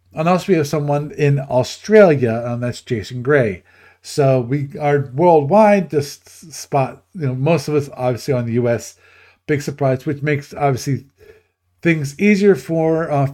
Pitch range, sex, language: 120-165 Hz, male, English